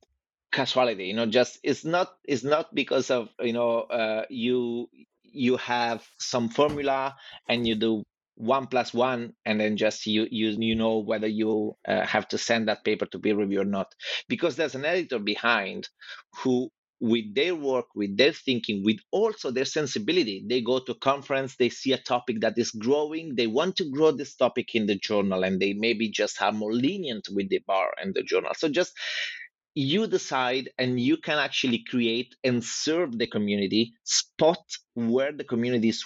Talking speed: 185 wpm